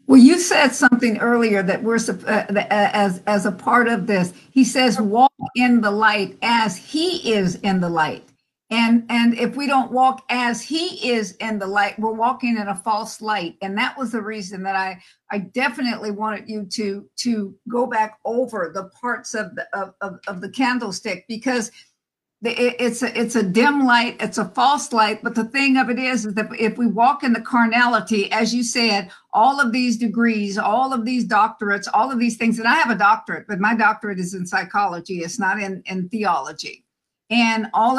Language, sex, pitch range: English, female, 205-245 Hz